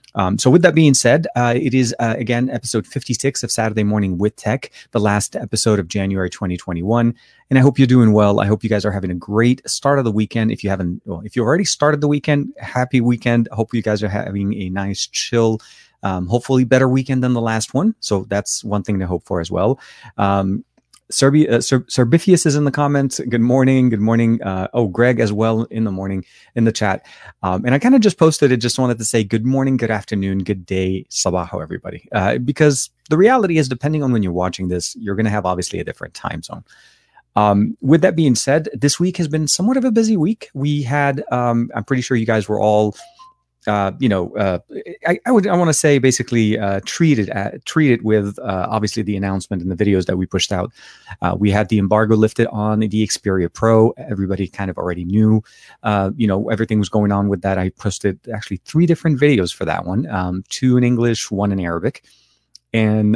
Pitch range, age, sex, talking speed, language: 100-130 Hz, 30-49, male, 225 wpm, English